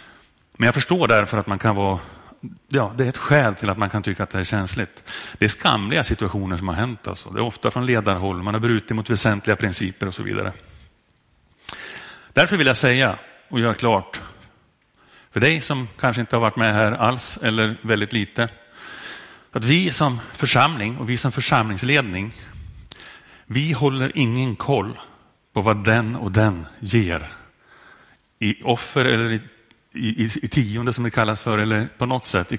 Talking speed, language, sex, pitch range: 185 wpm, Swedish, male, 100-120 Hz